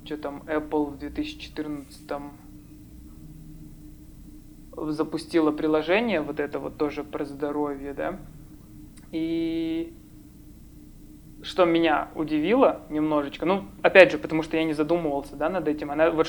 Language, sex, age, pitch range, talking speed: Russian, male, 20-39, 145-155 Hz, 120 wpm